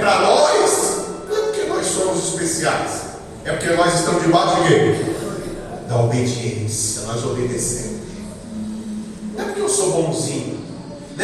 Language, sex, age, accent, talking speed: Portuguese, male, 40-59, Brazilian, 135 wpm